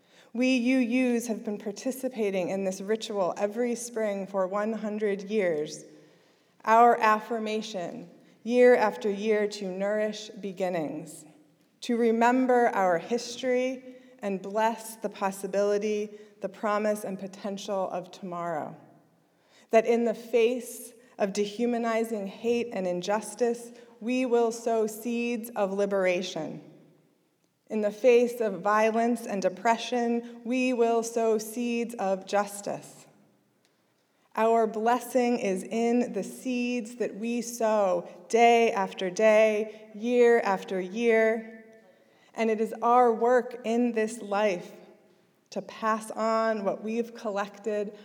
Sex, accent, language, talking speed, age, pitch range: female, American, English, 115 wpm, 20-39, 195-235 Hz